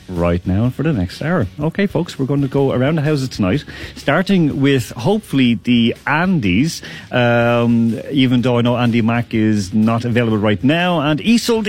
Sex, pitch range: male, 110-160 Hz